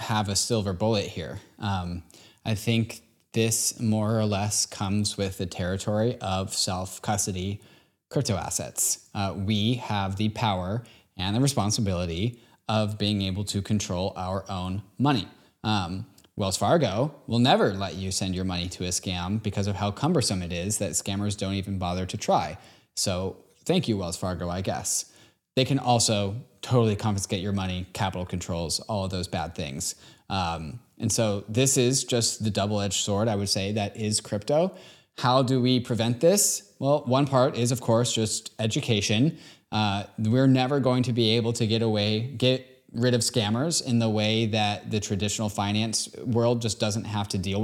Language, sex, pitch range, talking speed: English, male, 100-120 Hz, 175 wpm